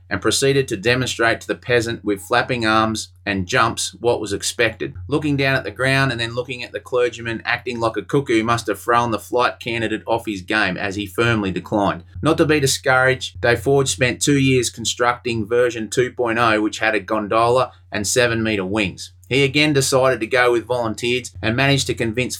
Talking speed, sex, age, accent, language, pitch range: 200 wpm, male, 30-49, Australian, English, 105-125 Hz